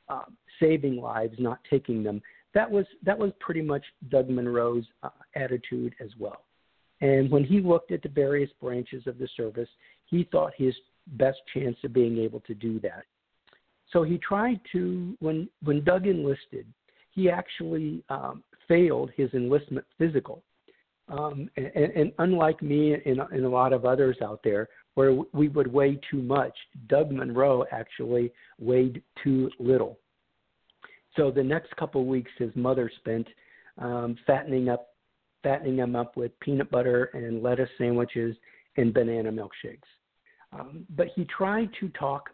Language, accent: English, American